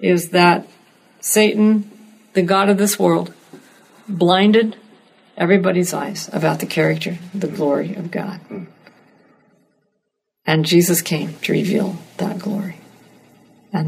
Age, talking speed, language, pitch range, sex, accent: 50-69, 110 wpm, English, 175-210 Hz, female, American